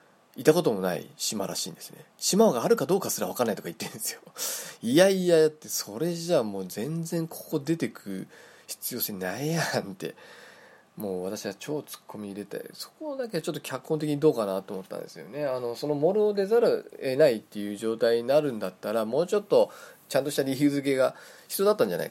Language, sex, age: Japanese, male, 20-39